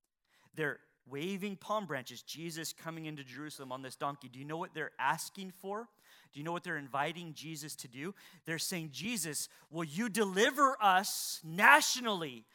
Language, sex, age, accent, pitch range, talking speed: English, male, 30-49, American, 160-245 Hz, 165 wpm